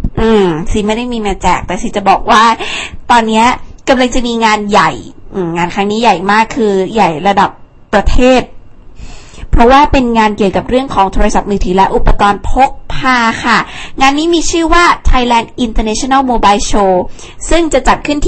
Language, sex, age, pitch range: Thai, female, 20-39, 200-255 Hz